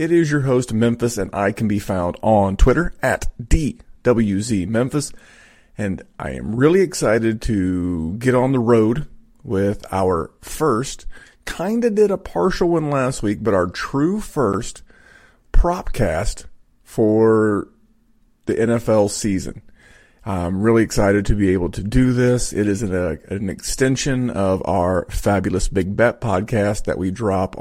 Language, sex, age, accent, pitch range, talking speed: English, male, 30-49, American, 100-120 Hz, 150 wpm